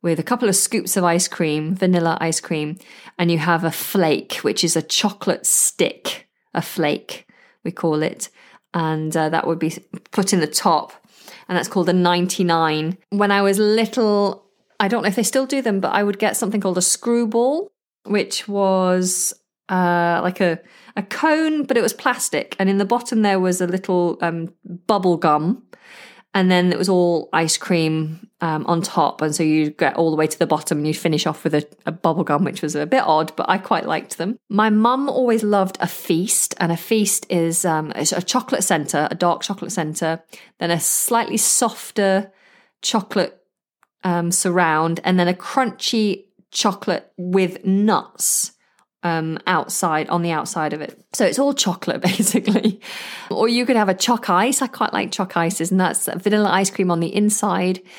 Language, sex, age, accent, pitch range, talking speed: English, female, 20-39, British, 170-210 Hz, 190 wpm